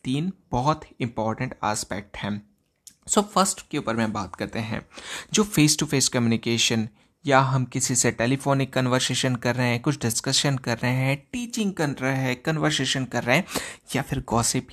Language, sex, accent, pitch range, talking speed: Hindi, male, native, 115-150 Hz, 175 wpm